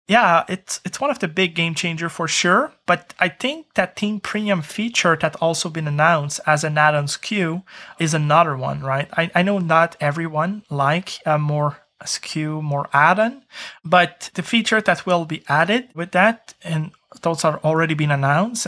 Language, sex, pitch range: English, male, 150-185 Hz